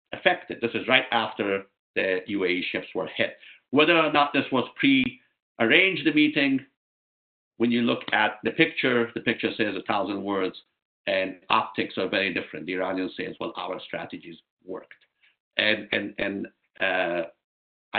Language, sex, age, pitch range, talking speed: English, male, 50-69, 115-150 Hz, 155 wpm